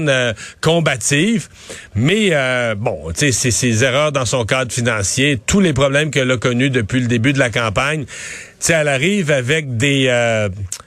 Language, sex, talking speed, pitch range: French, male, 170 wpm, 125-160 Hz